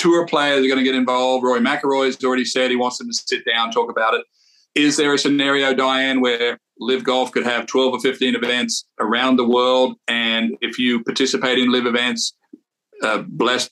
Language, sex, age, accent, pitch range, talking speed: English, male, 40-59, American, 120-145 Hz, 210 wpm